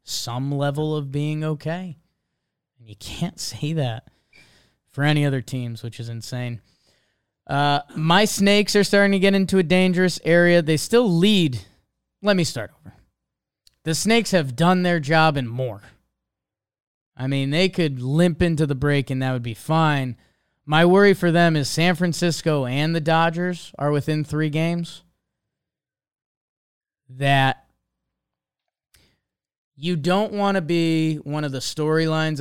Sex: male